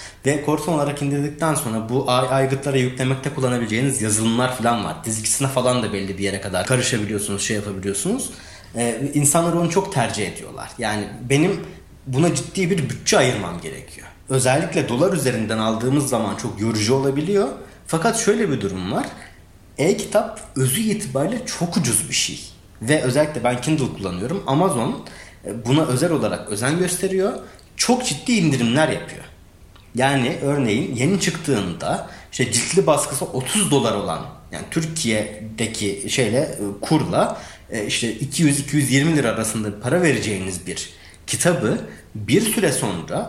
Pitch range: 105-155 Hz